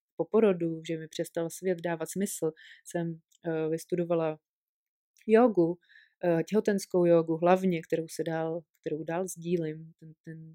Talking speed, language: 135 wpm, Czech